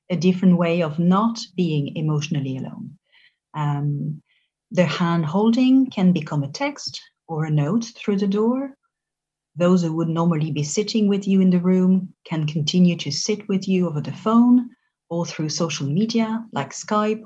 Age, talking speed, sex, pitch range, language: 40-59, 165 wpm, female, 155-205 Hz, English